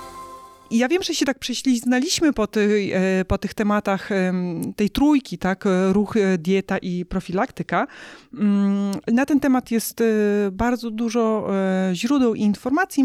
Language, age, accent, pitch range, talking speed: Polish, 30-49, native, 190-255 Hz, 125 wpm